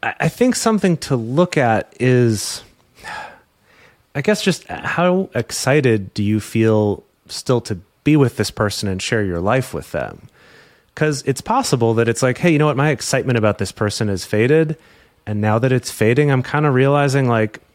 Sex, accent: male, American